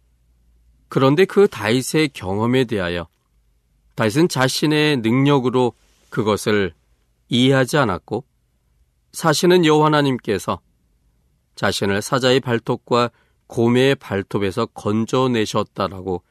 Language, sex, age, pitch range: Korean, male, 40-59, 85-140 Hz